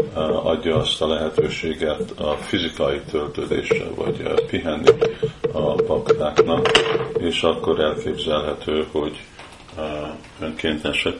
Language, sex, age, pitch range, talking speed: Hungarian, male, 50-69, 75-90 Hz, 85 wpm